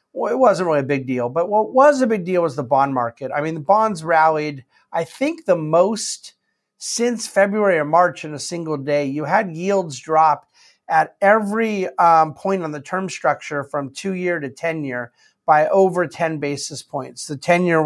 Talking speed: 190 wpm